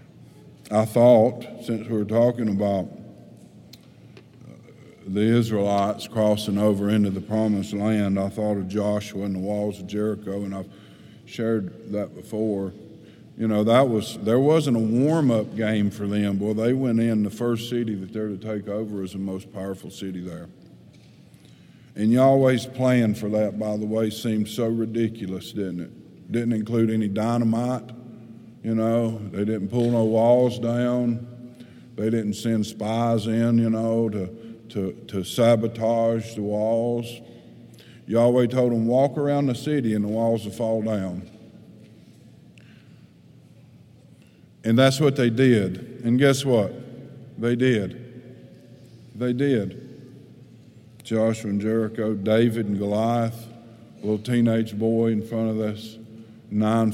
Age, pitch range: 50-69, 105-120 Hz